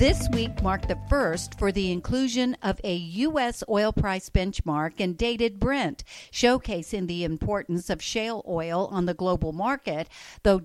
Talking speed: 160 wpm